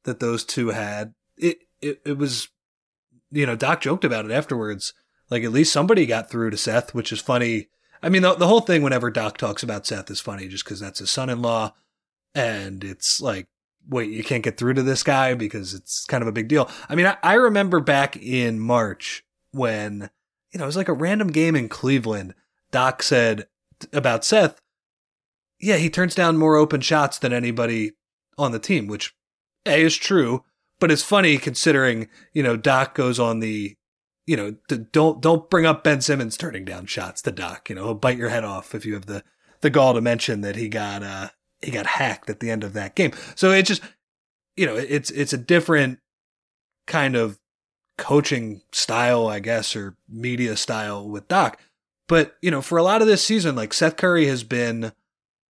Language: English